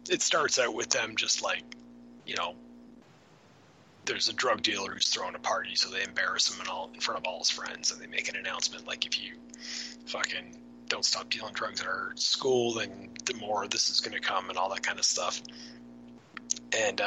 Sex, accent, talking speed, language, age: male, American, 210 wpm, English, 30-49